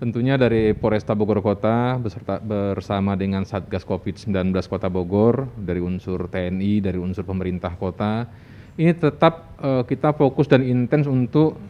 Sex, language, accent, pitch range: male, Indonesian, native, 105-135 Hz